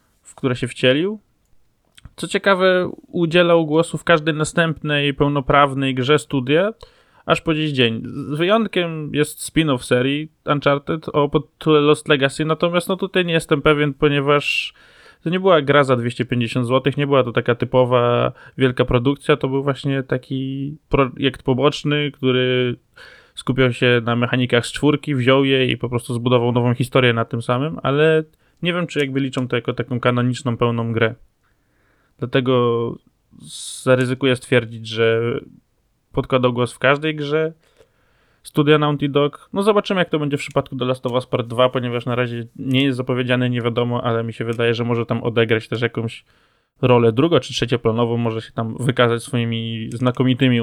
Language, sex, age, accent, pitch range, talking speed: Polish, male, 20-39, native, 120-150 Hz, 160 wpm